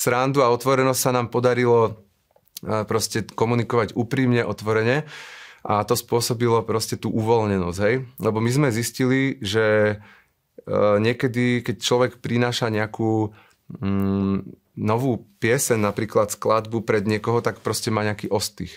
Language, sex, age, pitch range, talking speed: Slovak, male, 30-49, 95-115 Hz, 125 wpm